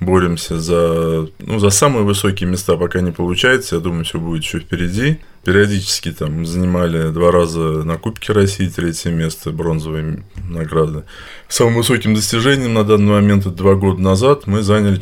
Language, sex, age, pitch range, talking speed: Russian, male, 20-39, 85-110 Hz, 155 wpm